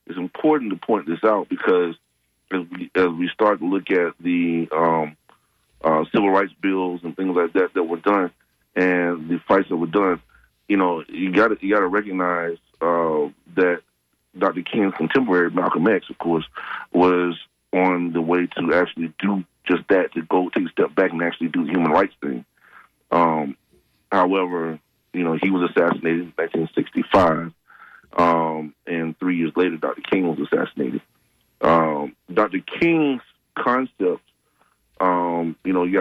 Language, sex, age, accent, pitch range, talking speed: English, male, 30-49, American, 80-95 Hz, 165 wpm